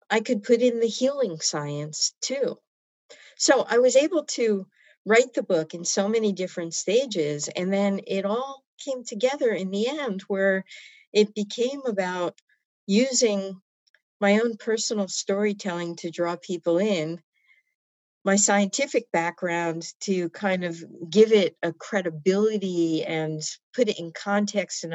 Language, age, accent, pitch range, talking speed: English, 50-69, American, 170-220 Hz, 140 wpm